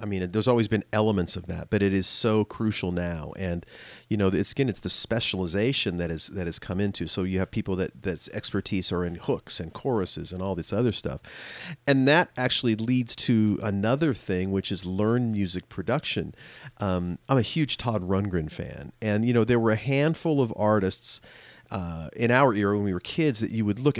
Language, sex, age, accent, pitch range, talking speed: English, male, 40-59, American, 95-125 Hz, 210 wpm